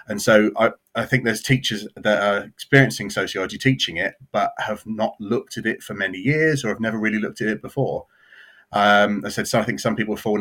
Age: 30-49